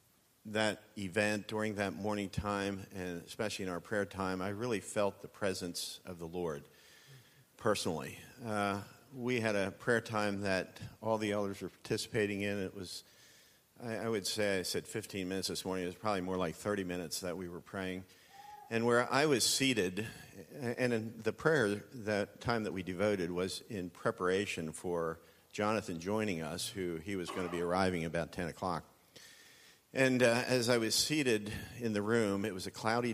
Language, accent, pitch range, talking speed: English, American, 90-115 Hz, 180 wpm